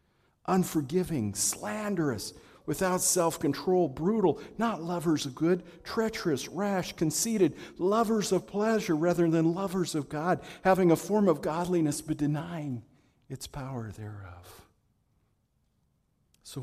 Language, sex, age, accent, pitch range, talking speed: English, male, 50-69, American, 120-150 Hz, 110 wpm